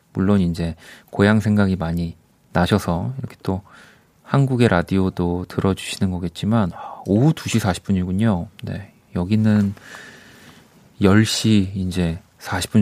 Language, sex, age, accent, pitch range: Korean, male, 30-49, native, 95-130 Hz